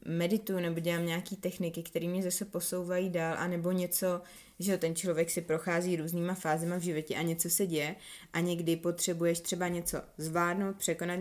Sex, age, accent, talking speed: female, 20-39, native, 170 wpm